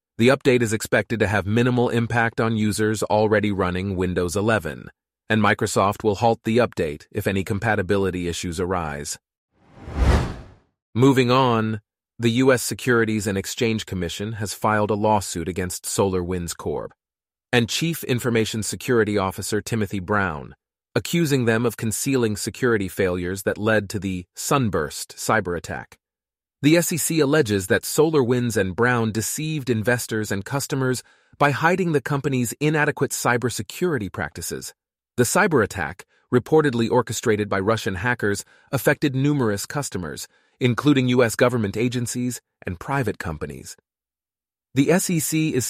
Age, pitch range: 30-49, 105-130 Hz